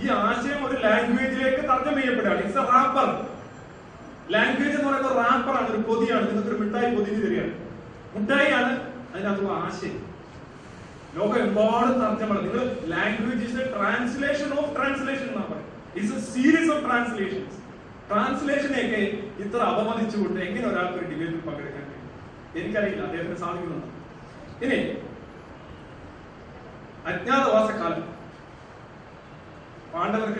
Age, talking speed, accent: 30-49, 45 wpm, native